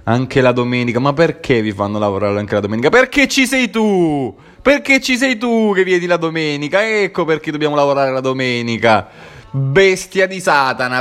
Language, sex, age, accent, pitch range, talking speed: Italian, male, 20-39, native, 115-160 Hz, 175 wpm